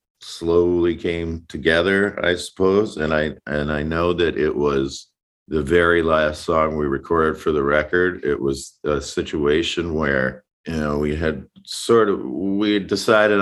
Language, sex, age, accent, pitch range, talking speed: English, male, 50-69, American, 70-90 Hz, 160 wpm